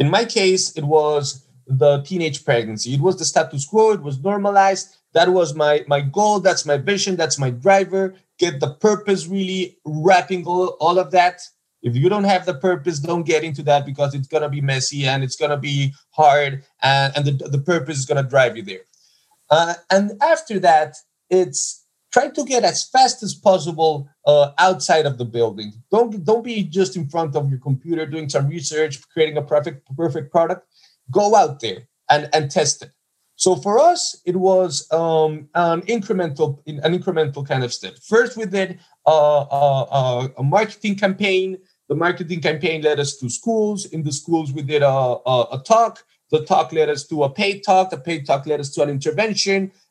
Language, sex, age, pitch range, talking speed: English, male, 30-49, 145-190 Hz, 195 wpm